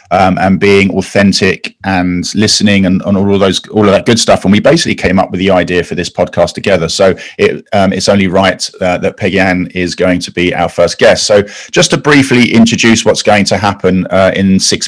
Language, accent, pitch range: English, British, 95-115 Hz